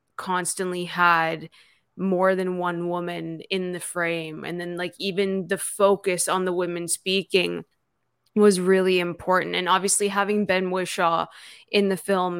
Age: 20-39